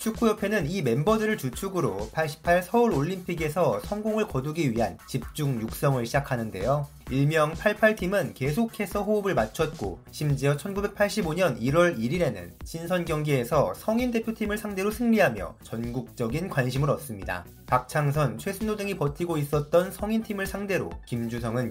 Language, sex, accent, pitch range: Korean, male, native, 135-195 Hz